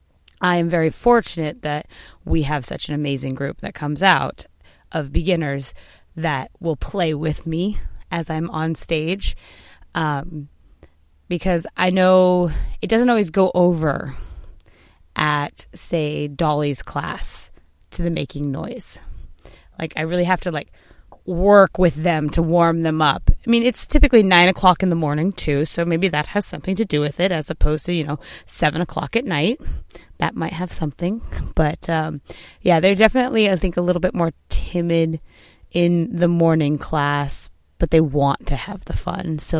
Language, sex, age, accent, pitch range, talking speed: English, female, 20-39, American, 145-180 Hz, 170 wpm